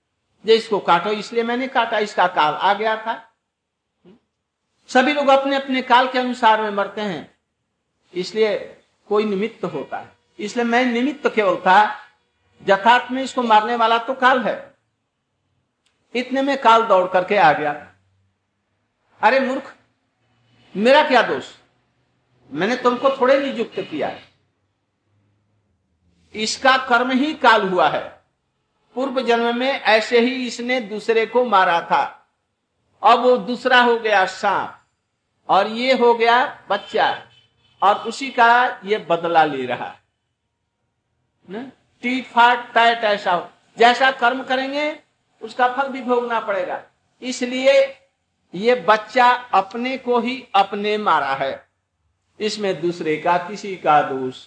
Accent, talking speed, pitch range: native, 125 wpm, 170-245 Hz